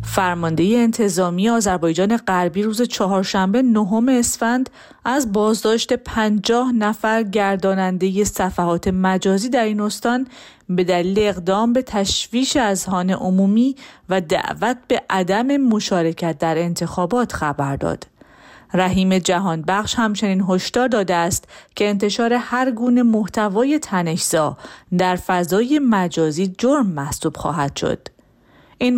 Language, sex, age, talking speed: Persian, female, 40-59, 115 wpm